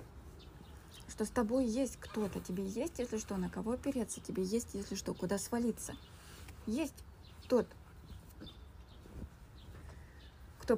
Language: Russian